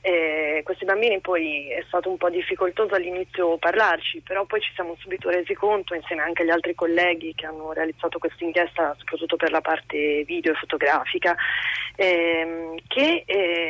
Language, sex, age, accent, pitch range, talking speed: Italian, female, 30-49, native, 160-200 Hz, 165 wpm